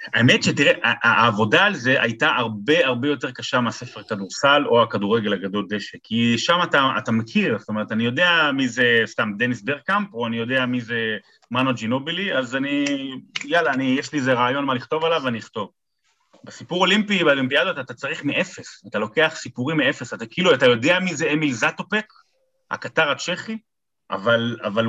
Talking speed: 160 wpm